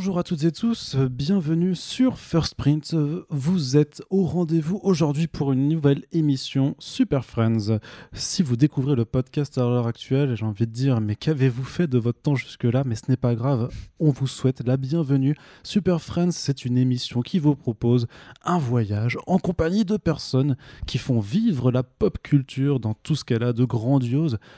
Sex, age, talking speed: male, 20-39, 185 wpm